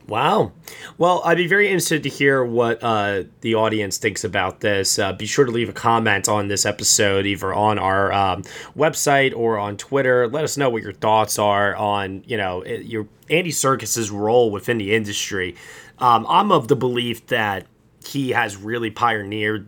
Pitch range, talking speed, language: 105-140 Hz, 185 wpm, English